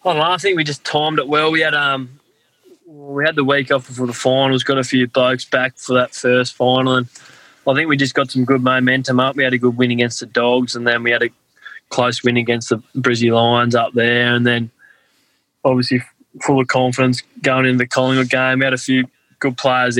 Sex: male